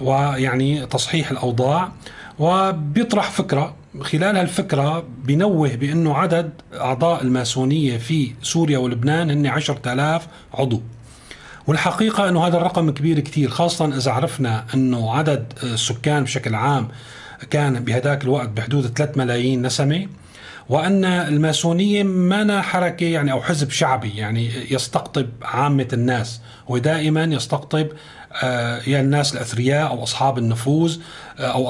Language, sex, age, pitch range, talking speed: Arabic, male, 40-59, 130-160 Hz, 115 wpm